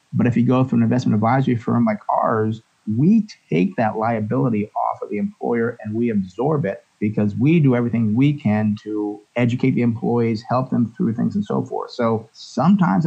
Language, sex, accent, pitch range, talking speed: English, male, American, 115-145 Hz, 195 wpm